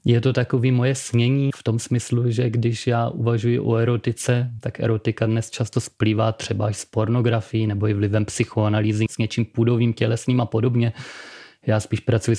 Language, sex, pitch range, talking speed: Czech, male, 110-125 Hz, 175 wpm